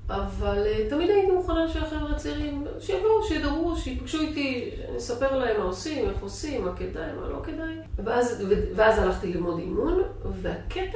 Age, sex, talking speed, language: 40-59, female, 160 wpm, Hebrew